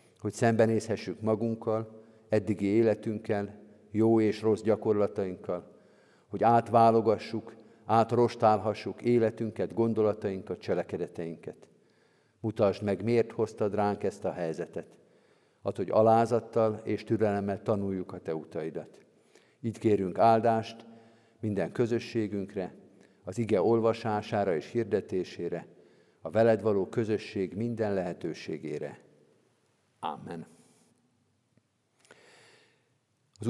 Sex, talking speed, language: male, 90 wpm, Hungarian